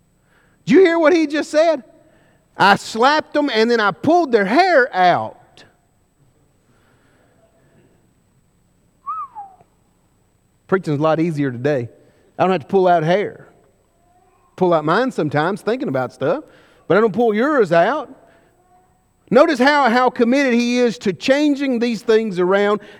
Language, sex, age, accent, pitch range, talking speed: English, male, 40-59, American, 200-280 Hz, 140 wpm